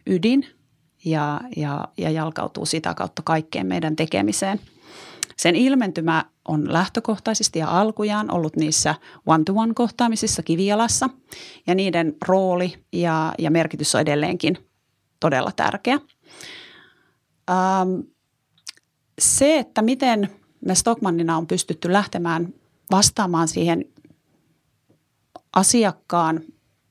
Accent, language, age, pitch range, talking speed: native, Finnish, 30-49, 165-225 Hz, 90 wpm